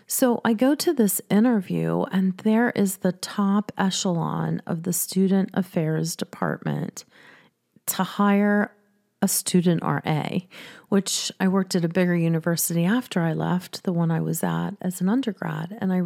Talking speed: 155 wpm